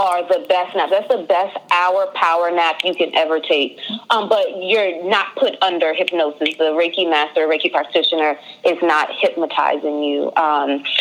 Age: 30-49